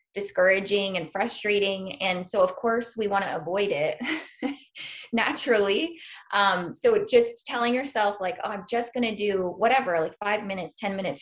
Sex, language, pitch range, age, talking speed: female, English, 190-240 Hz, 20-39, 165 wpm